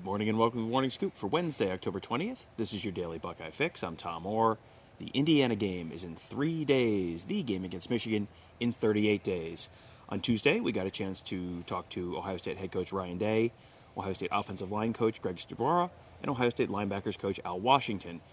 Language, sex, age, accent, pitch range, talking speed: English, male, 30-49, American, 100-130 Hz, 205 wpm